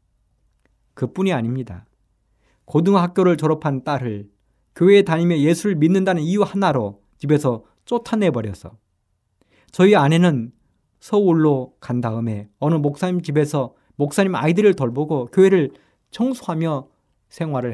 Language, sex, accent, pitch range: Korean, male, native, 110-175 Hz